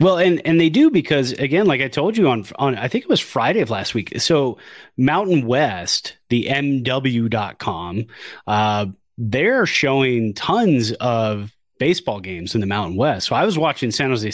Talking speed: 180 wpm